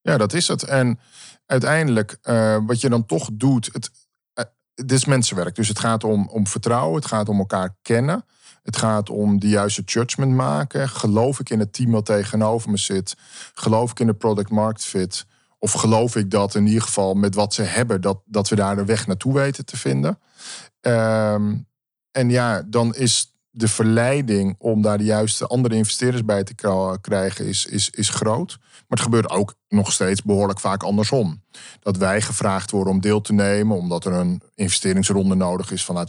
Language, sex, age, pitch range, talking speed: Dutch, male, 40-59, 100-120 Hz, 195 wpm